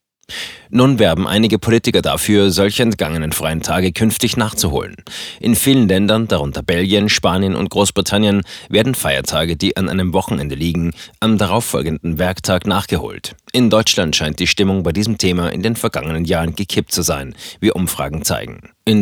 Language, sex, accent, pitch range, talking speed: German, male, German, 85-105 Hz, 155 wpm